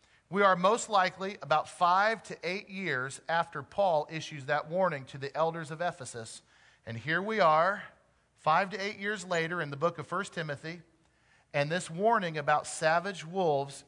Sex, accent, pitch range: male, American, 155-205 Hz